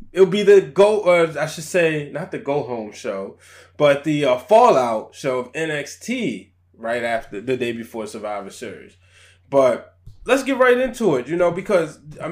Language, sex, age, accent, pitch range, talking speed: English, male, 20-39, American, 125-175 Hz, 185 wpm